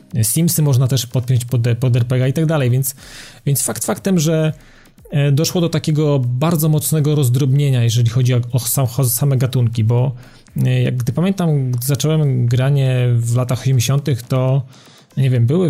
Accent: native